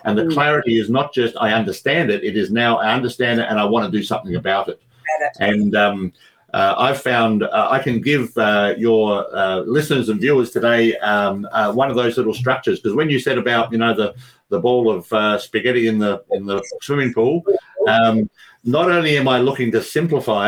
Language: English